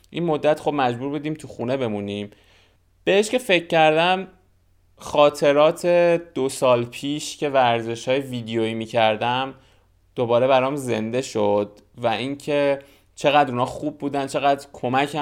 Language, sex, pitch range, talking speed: Persian, male, 120-160 Hz, 135 wpm